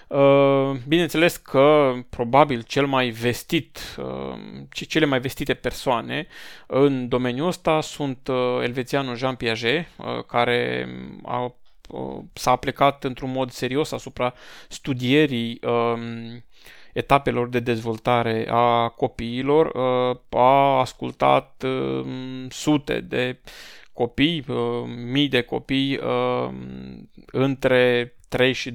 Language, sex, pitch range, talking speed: Romanian, male, 120-140 Hz, 85 wpm